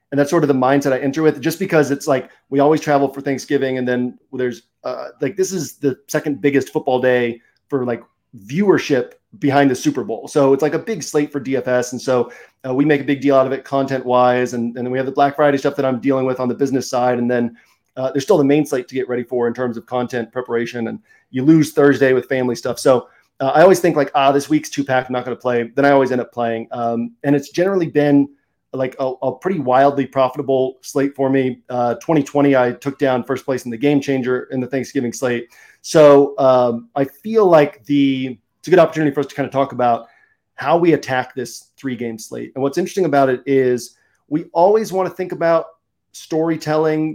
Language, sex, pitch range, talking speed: English, male, 125-145 Hz, 235 wpm